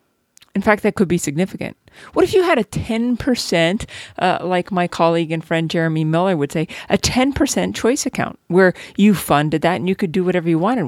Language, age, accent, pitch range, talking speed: English, 40-59, American, 165-225 Hz, 205 wpm